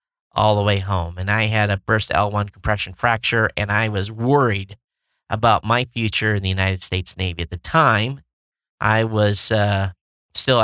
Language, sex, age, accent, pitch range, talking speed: English, male, 50-69, American, 100-130 Hz, 175 wpm